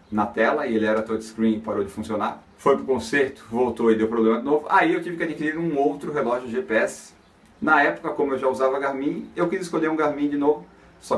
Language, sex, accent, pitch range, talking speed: Portuguese, male, Brazilian, 115-155 Hz, 230 wpm